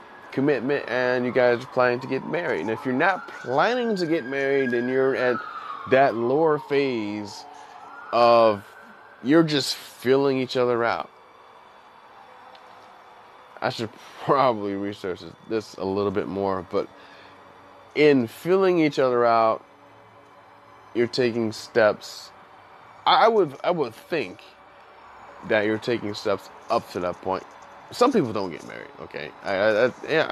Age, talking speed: 20-39, 135 wpm